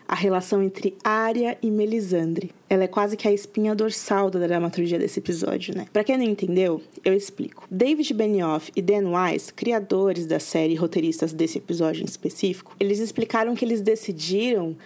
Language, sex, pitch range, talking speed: Portuguese, female, 185-225 Hz, 170 wpm